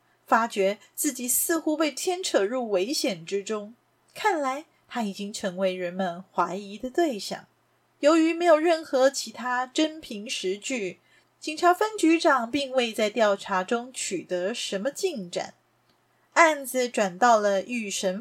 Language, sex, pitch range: Chinese, female, 195-315 Hz